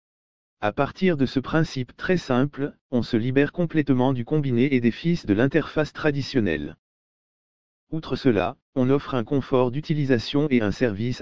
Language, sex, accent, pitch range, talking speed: French, male, French, 115-145 Hz, 155 wpm